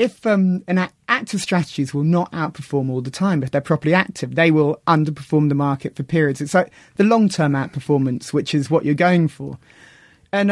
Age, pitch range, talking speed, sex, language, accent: 30-49, 155-205 Hz, 195 wpm, male, English, British